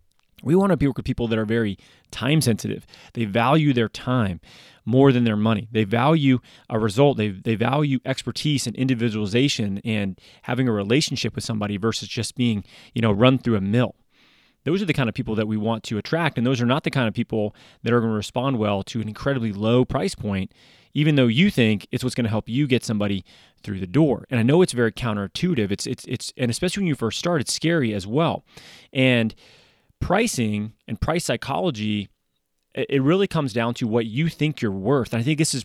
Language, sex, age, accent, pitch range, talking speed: English, male, 30-49, American, 110-135 Hz, 215 wpm